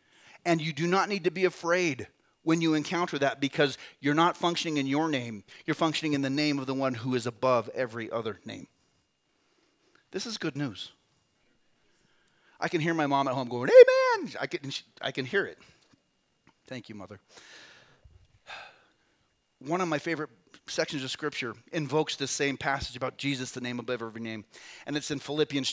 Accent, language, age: American, English, 30-49